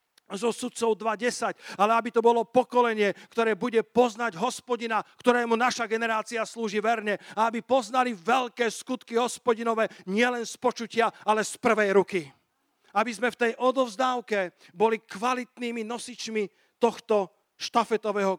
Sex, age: male, 50-69